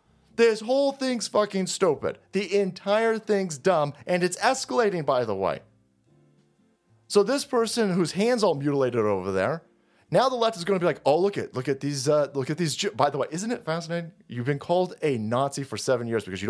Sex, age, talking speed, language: male, 30-49, 210 wpm, English